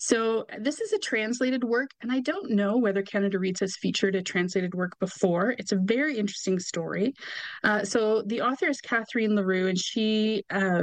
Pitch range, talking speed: 190-230 Hz, 190 wpm